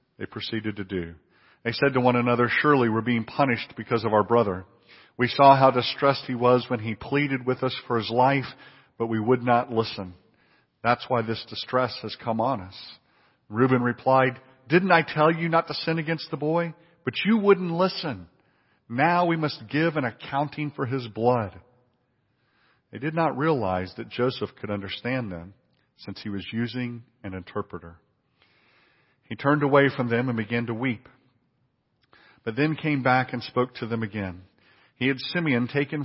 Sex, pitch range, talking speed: male, 110-140 Hz, 175 wpm